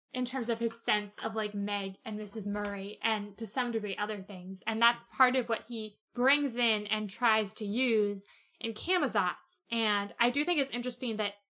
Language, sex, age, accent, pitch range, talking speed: English, female, 20-39, American, 210-255 Hz, 195 wpm